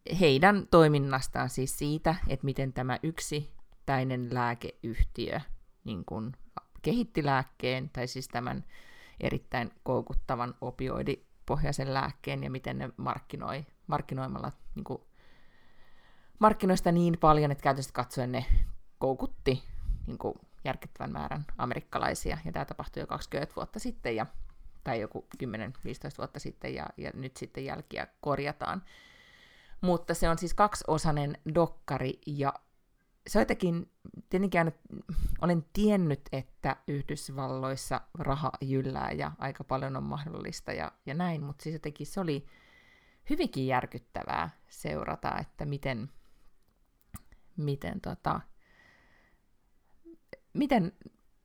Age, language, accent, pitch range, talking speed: 30-49, Finnish, native, 130-170 Hz, 105 wpm